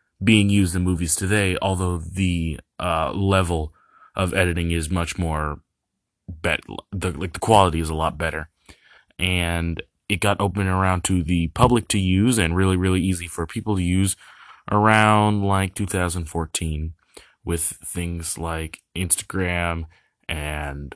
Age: 20-39